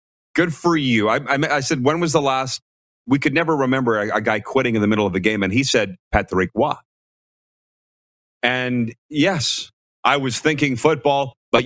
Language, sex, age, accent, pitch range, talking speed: English, male, 30-49, American, 105-140 Hz, 190 wpm